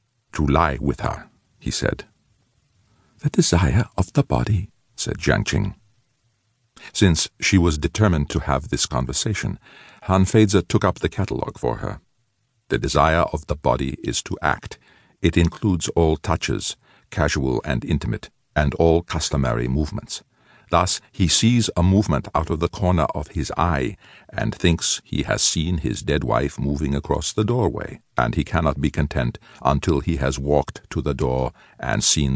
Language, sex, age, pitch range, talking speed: English, male, 50-69, 75-110 Hz, 160 wpm